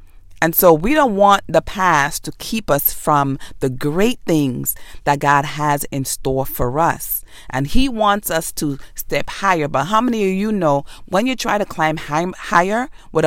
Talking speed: 190 wpm